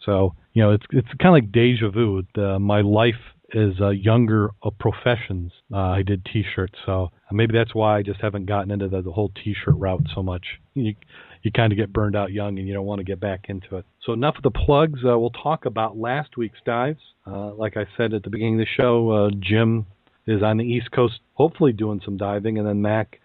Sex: male